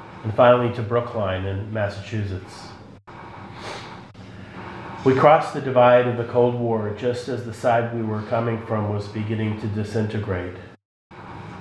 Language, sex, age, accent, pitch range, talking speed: English, male, 30-49, American, 105-120 Hz, 135 wpm